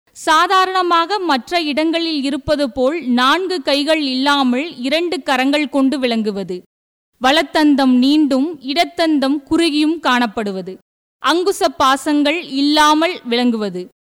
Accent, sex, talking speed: Indian, female, 100 wpm